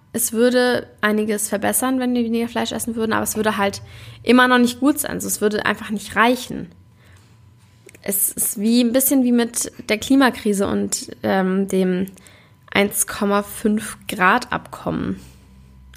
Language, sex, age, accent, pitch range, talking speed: German, female, 20-39, German, 195-240 Hz, 145 wpm